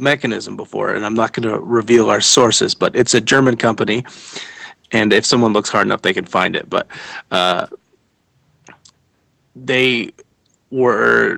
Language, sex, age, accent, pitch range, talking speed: English, male, 30-49, American, 105-120 Hz, 155 wpm